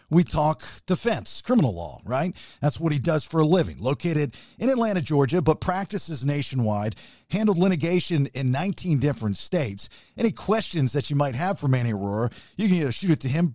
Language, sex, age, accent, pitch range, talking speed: English, male, 50-69, American, 130-175 Hz, 185 wpm